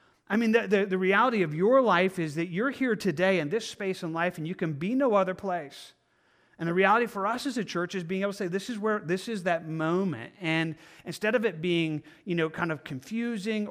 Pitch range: 150-190 Hz